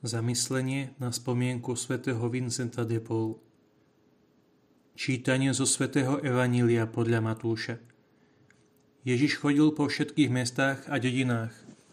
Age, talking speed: 30-49, 100 wpm